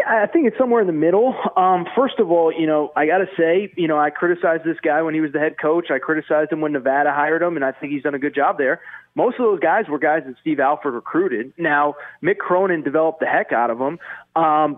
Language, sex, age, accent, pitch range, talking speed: English, male, 20-39, American, 145-185 Hz, 265 wpm